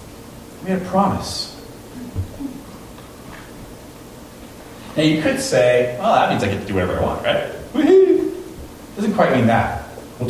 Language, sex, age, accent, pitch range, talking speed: English, male, 40-59, American, 100-125 Hz, 140 wpm